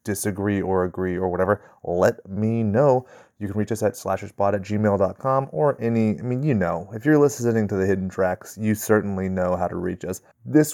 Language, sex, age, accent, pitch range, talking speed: English, male, 30-49, American, 105-125 Hz, 205 wpm